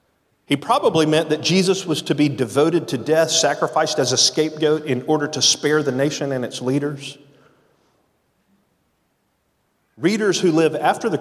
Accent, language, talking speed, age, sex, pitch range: American, English, 155 wpm, 40-59, male, 125-170 Hz